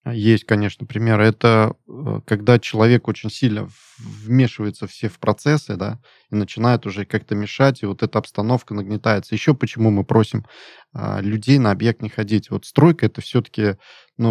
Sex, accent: male, native